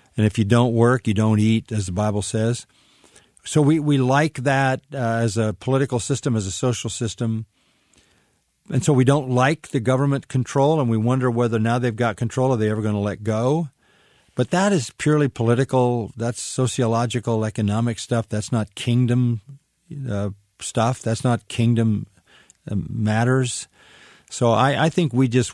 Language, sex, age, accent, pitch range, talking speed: English, male, 50-69, American, 110-130 Hz, 175 wpm